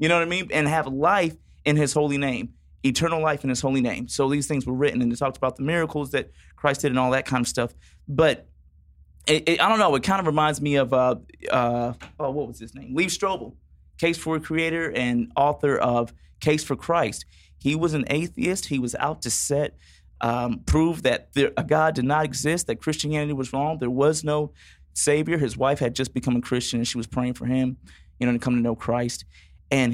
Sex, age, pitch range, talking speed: male, 30-49, 120-155 Hz, 235 wpm